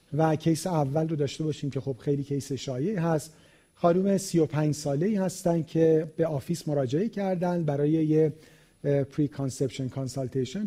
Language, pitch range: Persian, 140-175 Hz